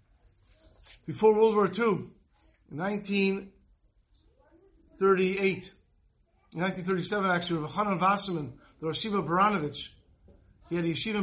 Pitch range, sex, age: 155-205 Hz, male, 50-69